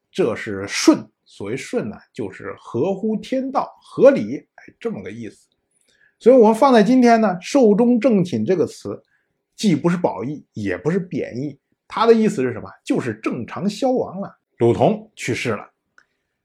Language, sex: Chinese, male